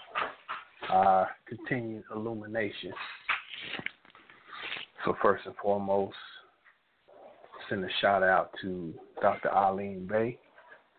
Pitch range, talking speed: 95-110 Hz, 80 wpm